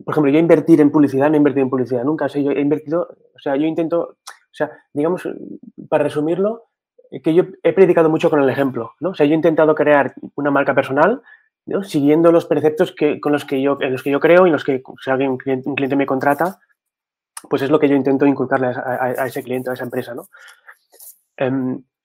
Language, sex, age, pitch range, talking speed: Spanish, male, 20-39, 140-165 Hz, 230 wpm